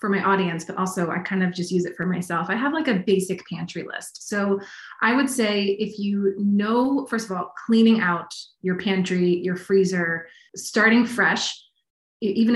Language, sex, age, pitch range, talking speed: English, female, 20-39, 175-205 Hz, 185 wpm